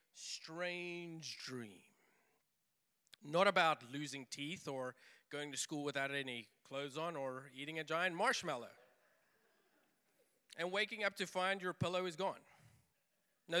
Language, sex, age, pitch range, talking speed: English, male, 40-59, 145-210 Hz, 130 wpm